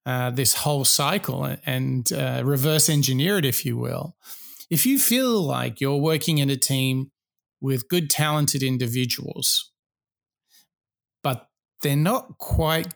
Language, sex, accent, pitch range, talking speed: English, male, Australian, 135-165 Hz, 140 wpm